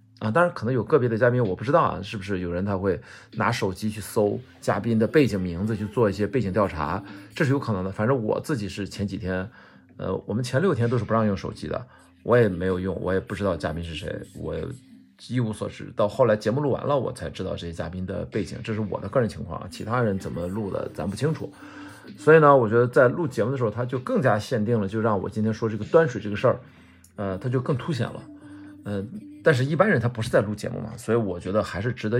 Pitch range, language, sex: 100-125 Hz, Chinese, male